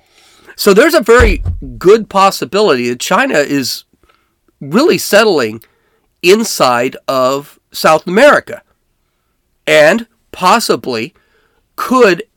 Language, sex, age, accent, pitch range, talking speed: English, male, 40-59, American, 130-220 Hz, 85 wpm